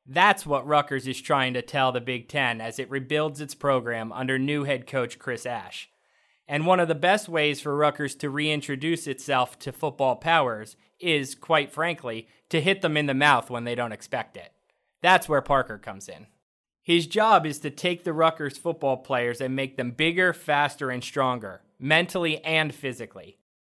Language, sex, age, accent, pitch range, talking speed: English, male, 20-39, American, 130-165 Hz, 185 wpm